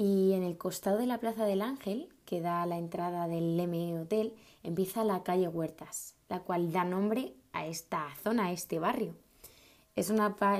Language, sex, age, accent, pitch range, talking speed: Spanish, female, 20-39, Spanish, 170-195 Hz, 185 wpm